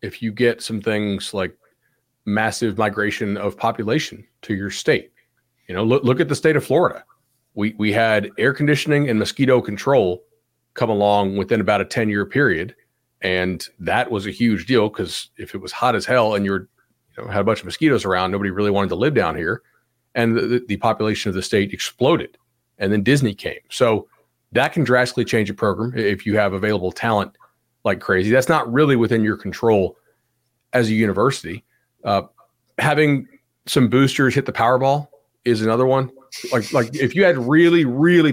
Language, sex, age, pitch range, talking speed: English, male, 40-59, 105-130 Hz, 190 wpm